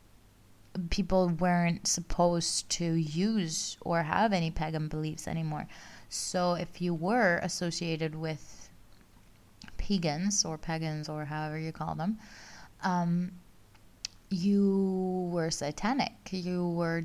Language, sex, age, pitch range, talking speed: English, female, 20-39, 155-190 Hz, 110 wpm